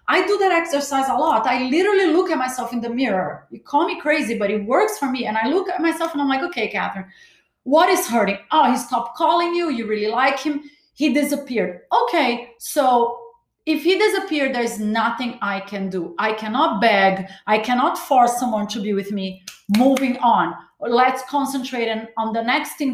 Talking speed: 200 wpm